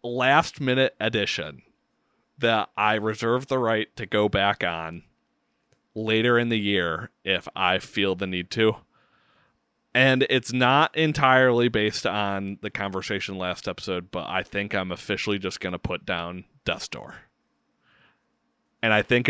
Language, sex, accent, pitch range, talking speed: English, male, American, 95-120 Hz, 145 wpm